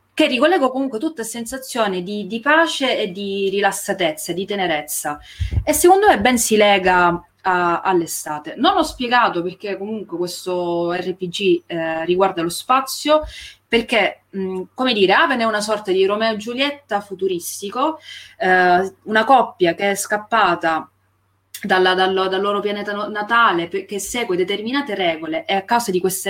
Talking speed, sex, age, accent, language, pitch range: 150 wpm, female, 20-39, native, Italian, 175-235 Hz